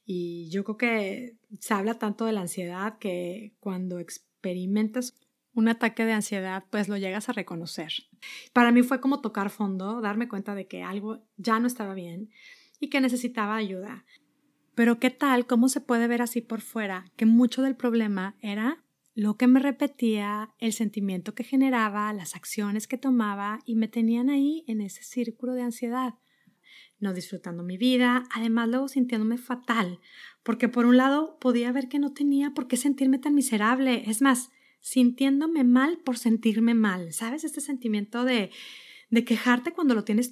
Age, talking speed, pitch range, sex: 30-49, 170 wpm, 210-255 Hz, female